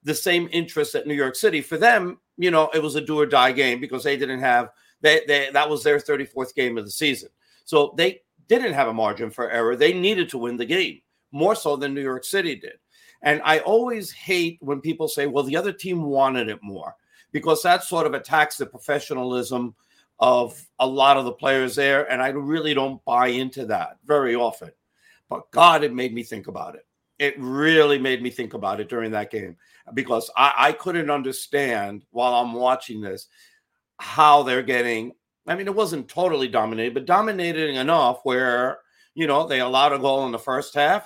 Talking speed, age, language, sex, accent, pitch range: 205 wpm, 60-79, English, male, American, 130-175 Hz